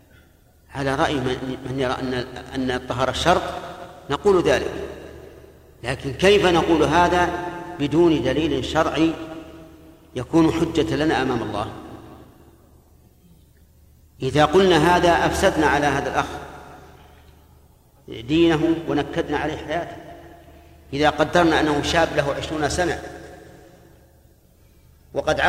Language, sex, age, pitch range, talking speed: Arabic, male, 50-69, 130-165 Hz, 95 wpm